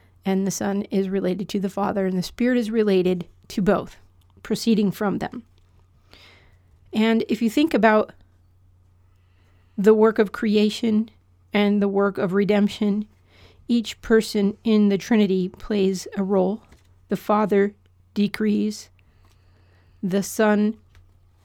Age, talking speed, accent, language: 40-59, 125 wpm, American, English